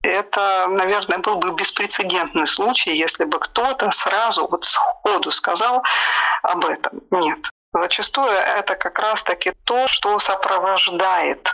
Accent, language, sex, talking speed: native, Russian, female, 125 wpm